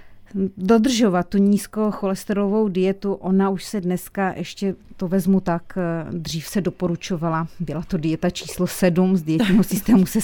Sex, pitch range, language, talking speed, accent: female, 170-185 Hz, Czech, 145 wpm, native